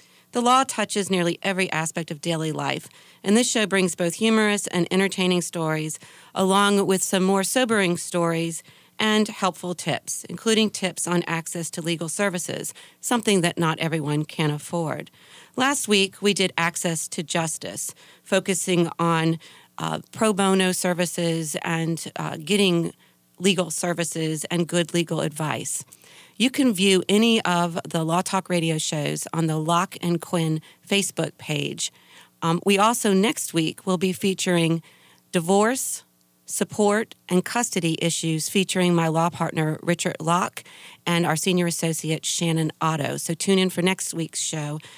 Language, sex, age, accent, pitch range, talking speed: English, female, 40-59, American, 165-195 Hz, 150 wpm